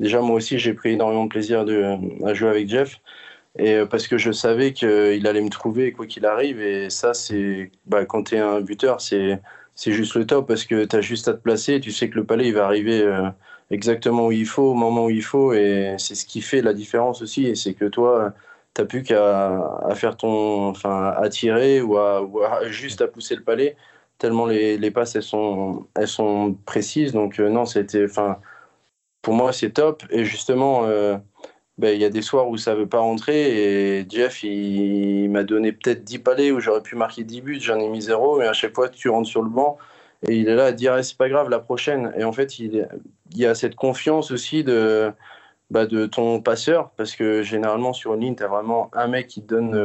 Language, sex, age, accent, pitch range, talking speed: French, male, 20-39, French, 105-120 Hz, 240 wpm